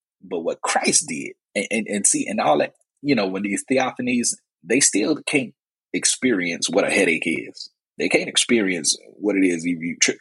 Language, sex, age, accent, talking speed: English, male, 30-49, American, 195 wpm